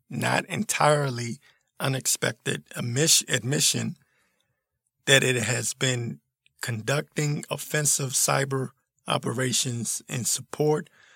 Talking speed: 75 wpm